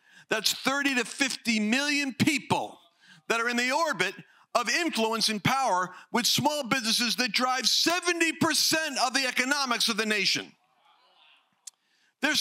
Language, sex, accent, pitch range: English, male, American, 190-260 Hz